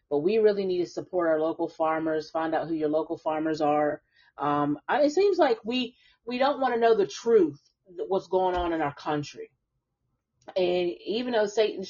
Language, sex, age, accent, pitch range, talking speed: English, female, 30-49, American, 150-215 Hz, 195 wpm